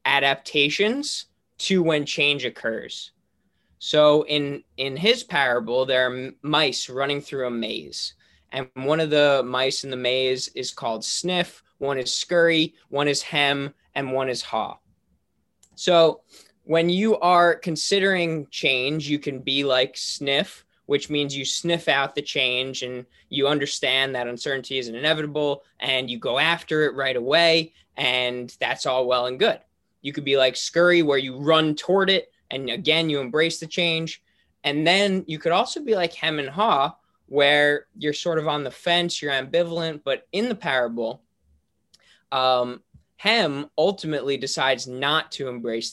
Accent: American